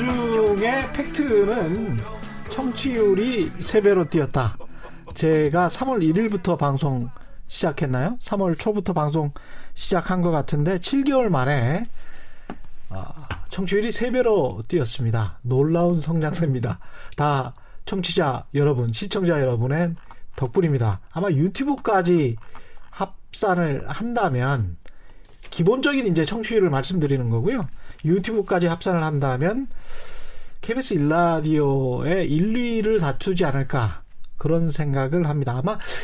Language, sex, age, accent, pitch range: Korean, male, 40-59, native, 145-200 Hz